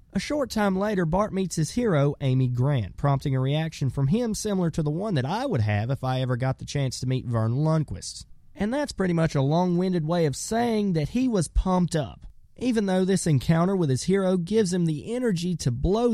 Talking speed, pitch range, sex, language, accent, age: 225 wpm, 125-185 Hz, male, English, American, 30-49